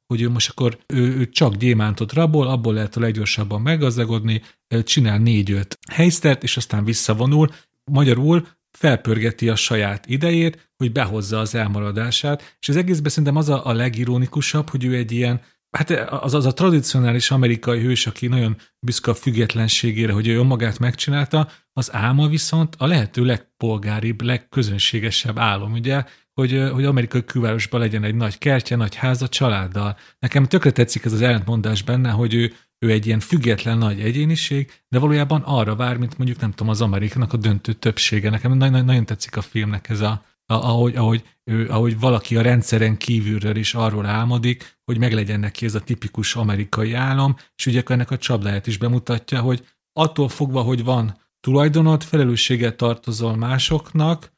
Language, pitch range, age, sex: Hungarian, 110-135 Hz, 40-59, male